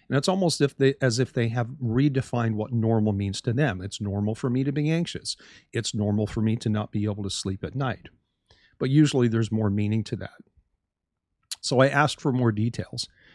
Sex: male